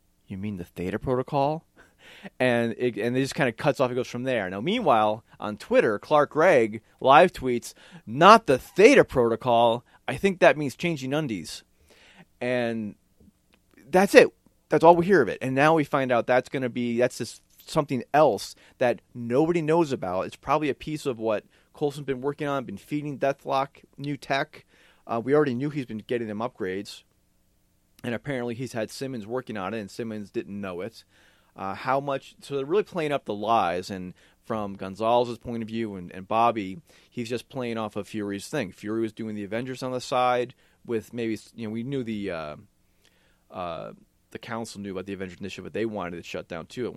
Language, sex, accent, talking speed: English, male, American, 200 wpm